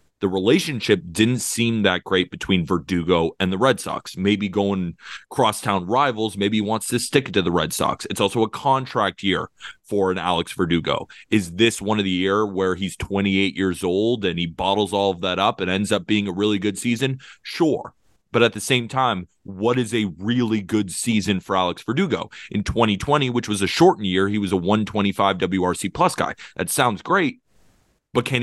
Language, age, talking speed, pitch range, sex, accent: English, 30-49, 200 wpm, 95-120 Hz, male, American